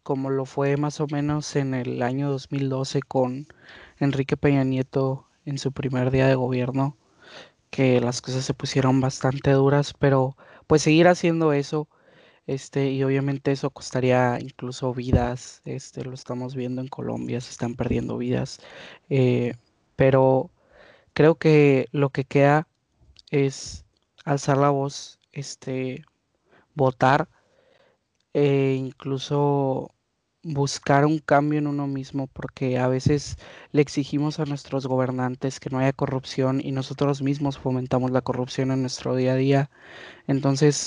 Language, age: Spanish, 20-39